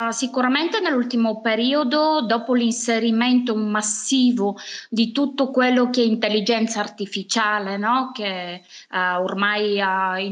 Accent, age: native, 20-39